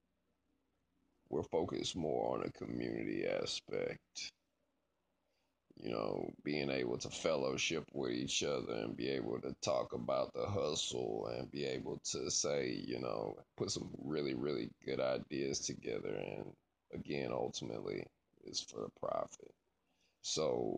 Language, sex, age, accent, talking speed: English, male, 20-39, American, 135 wpm